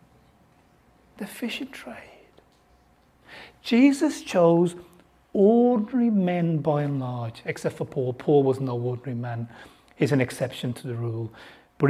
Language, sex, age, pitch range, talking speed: English, male, 40-59, 190-280 Hz, 125 wpm